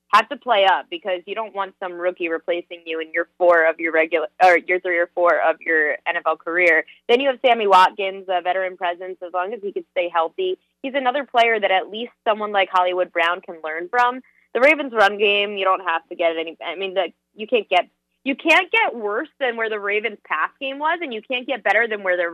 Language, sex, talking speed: English, female, 240 wpm